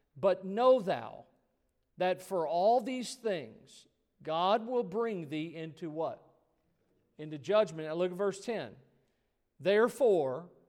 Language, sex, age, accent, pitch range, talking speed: English, male, 50-69, American, 175-225 Hz, 125 wpm